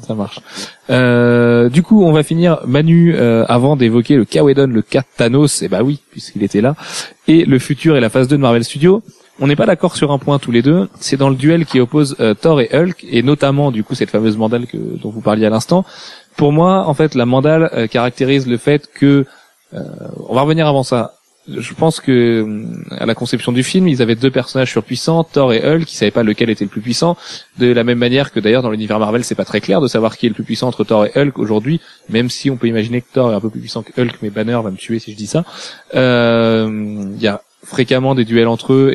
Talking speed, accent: 255 wpm, French